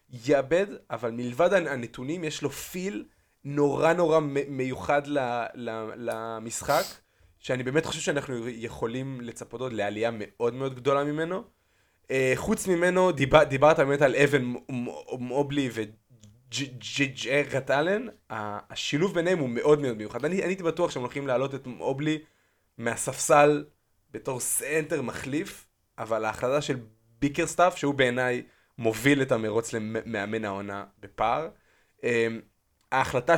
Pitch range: 115-150 Hz